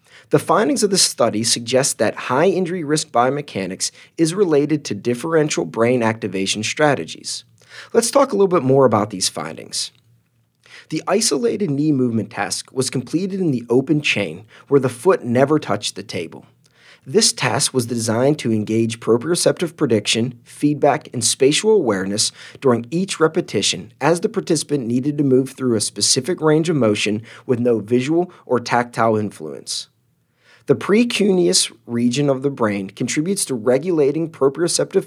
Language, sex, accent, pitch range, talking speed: English, male, American, 115-155 Hz, 150 wpm